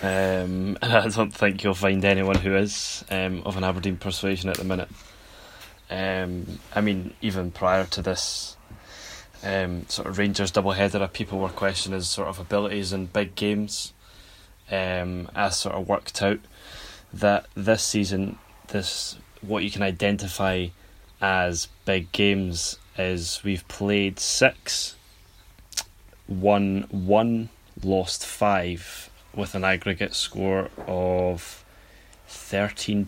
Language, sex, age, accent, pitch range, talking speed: English, male, 10-29, British, 95-100 Hz, 130 wpm